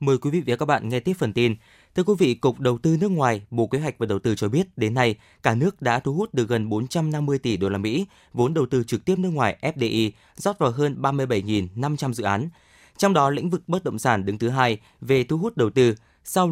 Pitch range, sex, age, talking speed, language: 110-150 Hz, male, 20-39, 255 wpm, Vietnamese